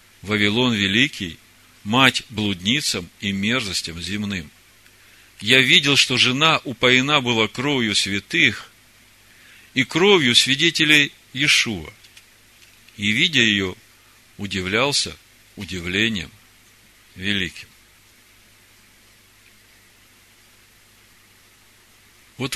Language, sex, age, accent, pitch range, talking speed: Russian, male, 50-69, native, 100-120 Hz, 70 wpm